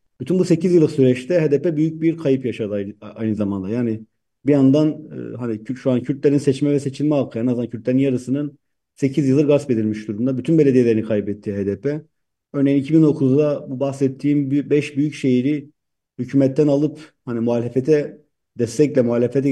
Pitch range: 120-145 Hz